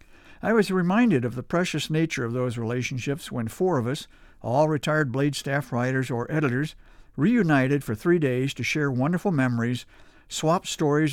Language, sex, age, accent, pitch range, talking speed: English, male, 60-79, American, 120-155 Hz, 165 wpm